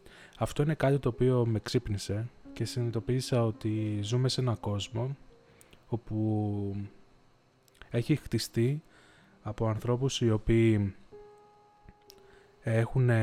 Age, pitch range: 20-39, 105-125 Hz